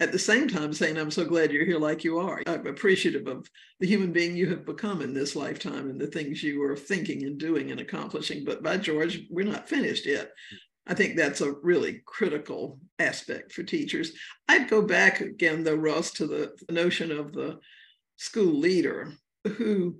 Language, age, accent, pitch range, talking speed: English, 60-79, American, 160-205 Hz, 195 wpm